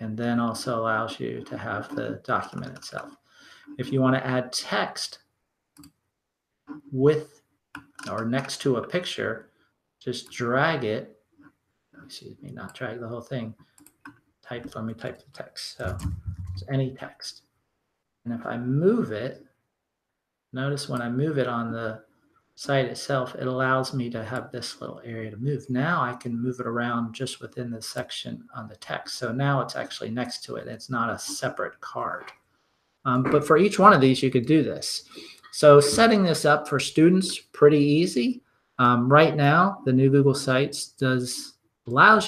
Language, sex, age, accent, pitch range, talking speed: English, male, 40-59, American, 120-140 Hz, 170 wpm